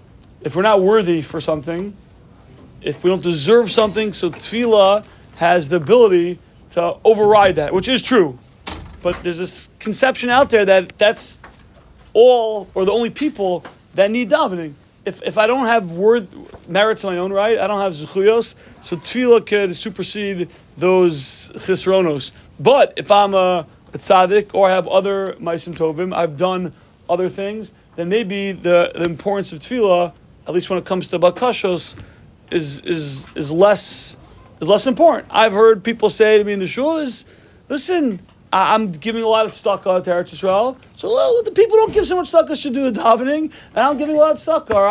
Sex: male